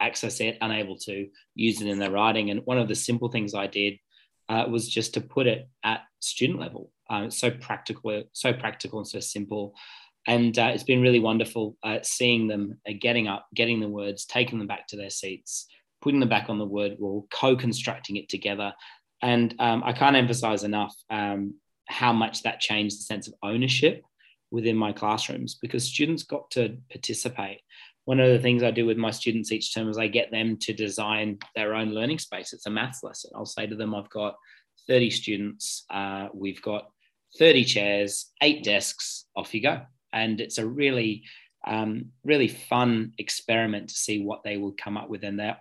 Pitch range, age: 105-120 Hz, 20-39